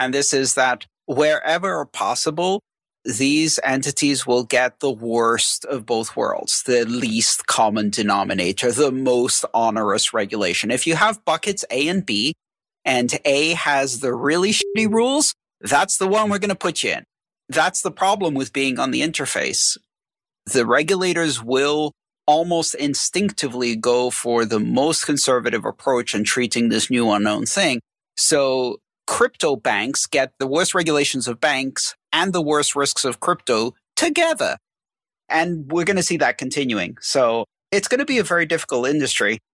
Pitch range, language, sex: 120-160 Hz, English, male